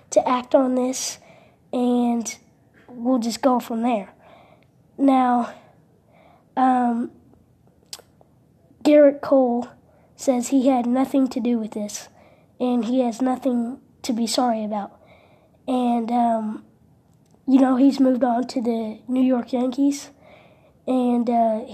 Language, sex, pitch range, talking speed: English, female, 235-265 Hz, 120 wpm